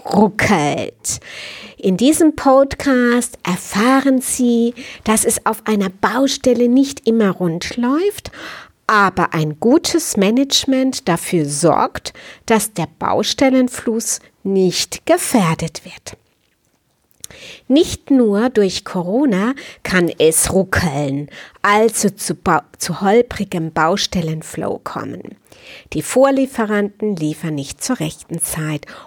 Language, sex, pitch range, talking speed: German, female, 170-255 Hz, 95 wpm